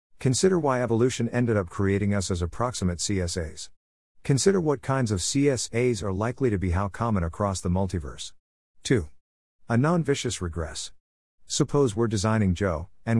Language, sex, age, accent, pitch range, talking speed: English, male, 50-69, American, 90-120 Hz, 150 wpm